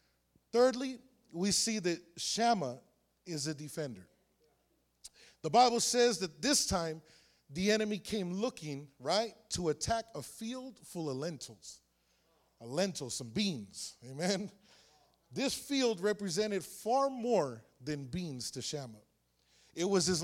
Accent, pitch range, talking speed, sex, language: American, 145-225 Hz, 130 wpm, male, English